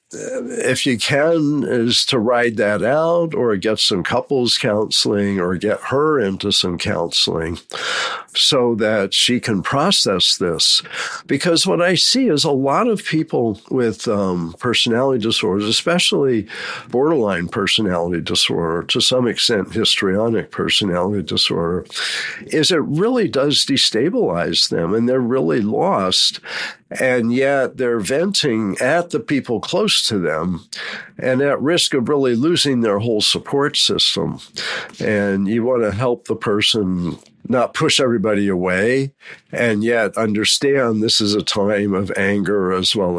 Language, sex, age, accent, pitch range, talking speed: English, male, 60-79, American, 100-135 Hz, 140 wpm